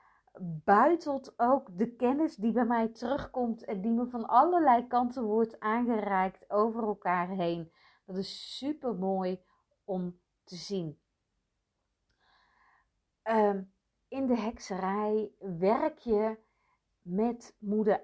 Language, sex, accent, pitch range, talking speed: Dutch, female, Dutch, 185-235 Hz, 115 wpm